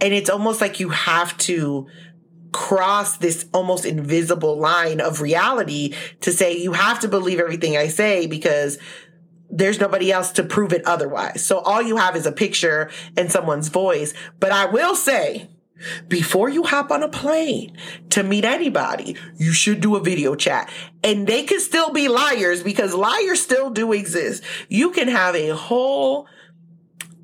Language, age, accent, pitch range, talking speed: English, 30-49, American, 170-210 Hz, 165 wpm